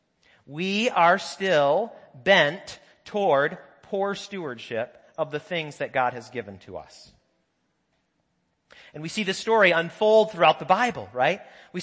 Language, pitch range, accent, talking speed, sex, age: English, 135-205 Hz, American, 135 wpm, male, 40-59